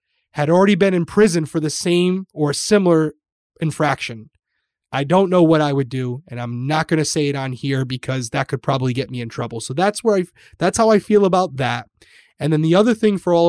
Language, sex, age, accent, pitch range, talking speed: English, male, 20-39, American, 140-190 Hz, 230 wpm